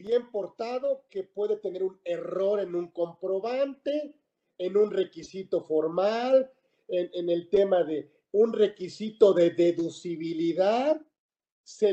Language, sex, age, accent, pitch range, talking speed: Spanish, male, 50-69, Mexican, 185-245 Hz, 120 wpm